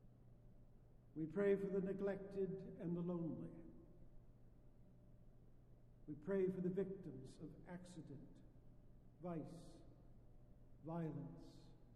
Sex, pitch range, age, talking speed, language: male, 155-190 Hz, 70-89, 85 wpm, English